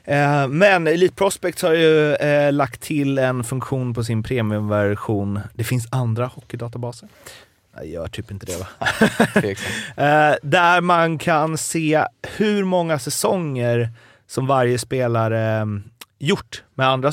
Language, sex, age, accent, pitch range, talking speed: Swedish, male, 30-49, native, 105-140 Hz, 135 wpm